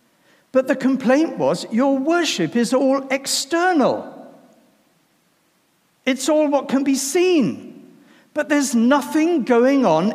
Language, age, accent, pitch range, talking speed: English, 60-79, British, 220-275 Hz, 120 wpm